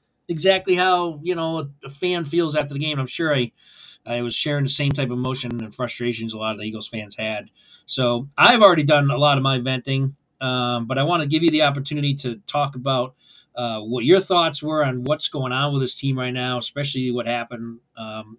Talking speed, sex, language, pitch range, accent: 225 wpm, male, English, 120-170 Hz, American